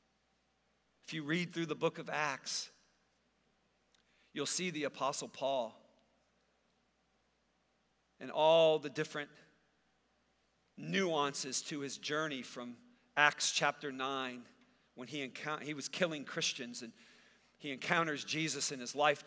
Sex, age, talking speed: male, 50-69, 120 wpm